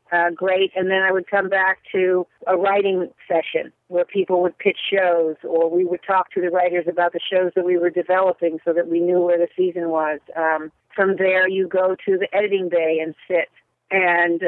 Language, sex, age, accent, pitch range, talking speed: English, female, 50-69, American, 170-190 Hz, 210 wpm